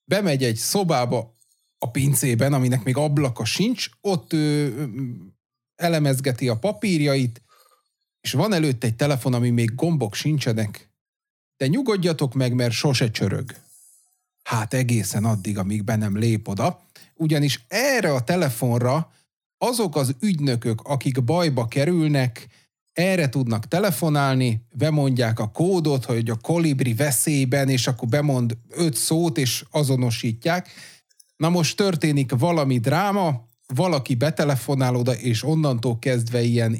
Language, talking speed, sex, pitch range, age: Hungarian, 120 wpm, male, 120-155 Hz, 30-49